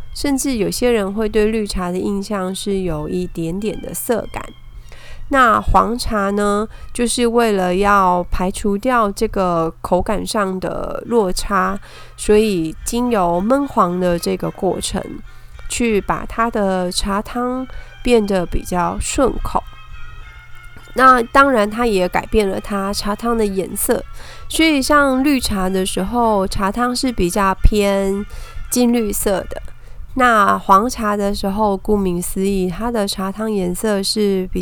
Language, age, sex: Chinese, 20-39, female